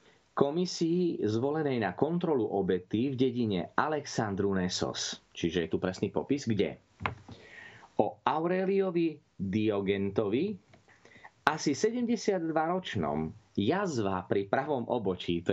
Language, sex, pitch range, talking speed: Slovak, male, 95-145 Hz, 95 wpm